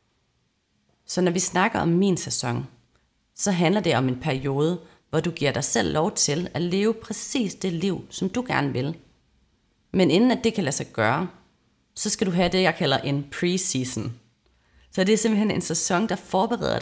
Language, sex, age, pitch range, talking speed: Danish, female, 30-49, 130-195 Hz, 195 wpm